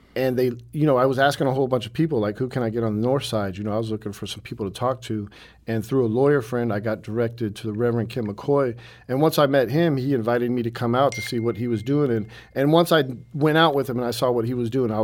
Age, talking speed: 50-69, 310 wpm